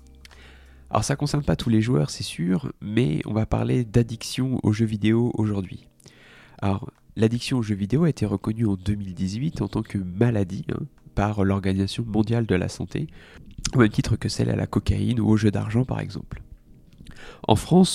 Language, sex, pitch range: French, male, 95-115 Hz